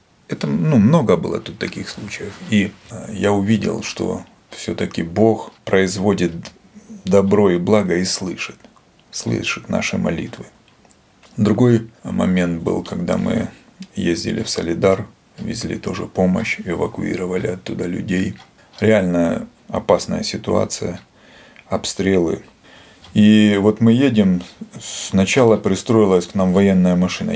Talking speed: 110 wpm